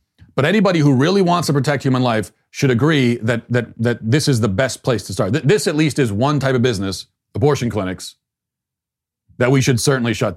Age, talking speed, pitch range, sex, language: 40-59, 210 wpm, 100-135 Hz, male, English